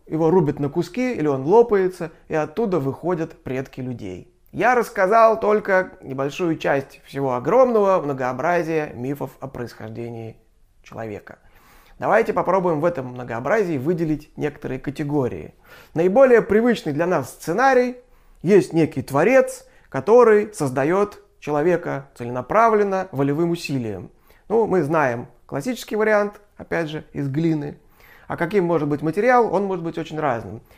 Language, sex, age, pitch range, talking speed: Russian, male, 30-49, 140-205 Hz, 125 wpm